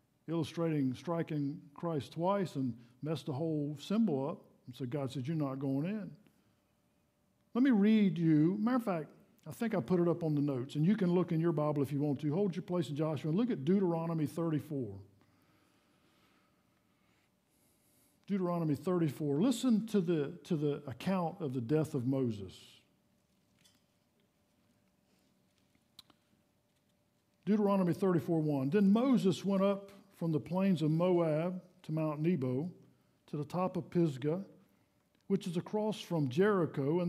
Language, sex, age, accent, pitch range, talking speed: English, male, 50-69, American, 145-195 Hz, 145 wpm